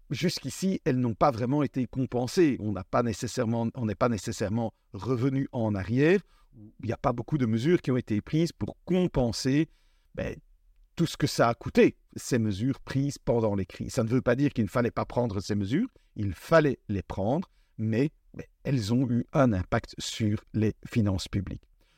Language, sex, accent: French, male, French